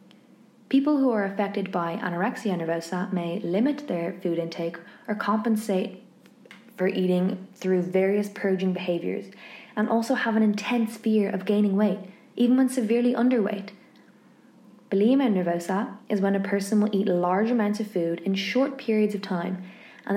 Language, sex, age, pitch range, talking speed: English, female, 20-39, 185-215 Hz, 150 wpm